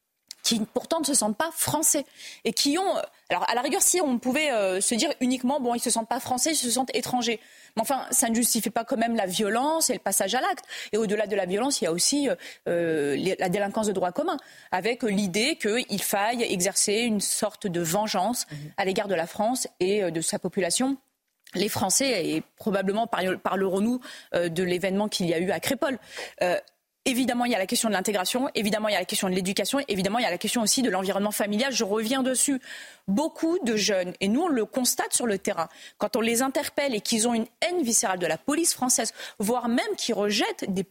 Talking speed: 225 wpm